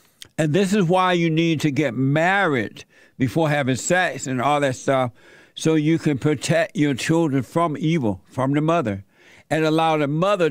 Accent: American